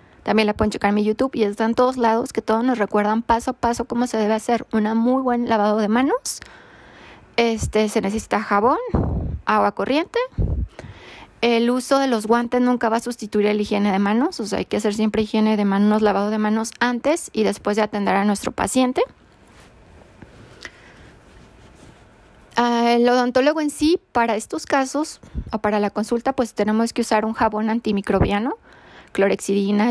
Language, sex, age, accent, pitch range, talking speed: Spanish, female, 20-39, Mexican, 205-240 Hz, 170 wpm